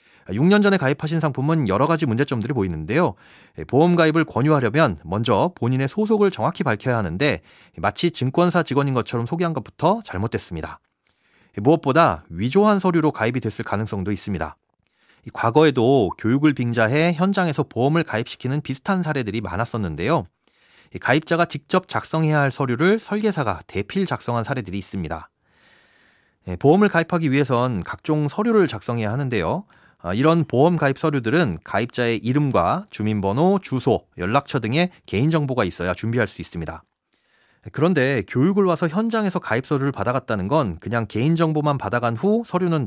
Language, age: Korean, 30-49